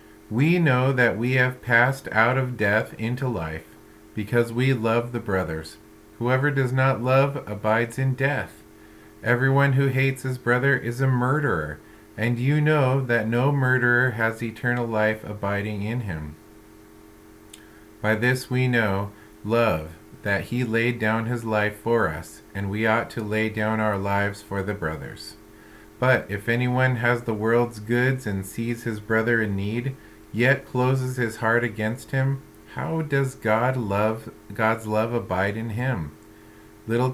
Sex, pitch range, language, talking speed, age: male, 100-125 Hz, English, 155 wpm, 40-59